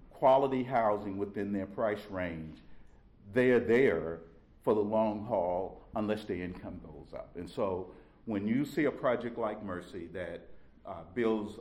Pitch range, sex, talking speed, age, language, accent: 95-110 Hz, male, 155 wpm, 50-69, English, American